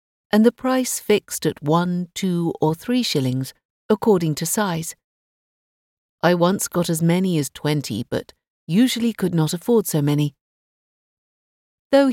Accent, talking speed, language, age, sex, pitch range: British, 140 wpm, English, 50-69, female, 140-195 Hz